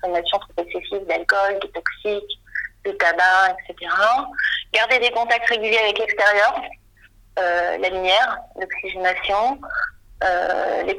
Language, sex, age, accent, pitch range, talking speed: French, female, 40-59, French, 190-240 Hz, 105 wpm